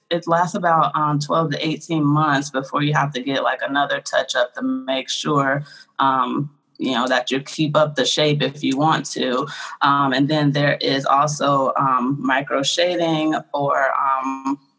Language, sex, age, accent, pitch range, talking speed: English, female, 20-39, American, 140-160 Hz, 180 wpm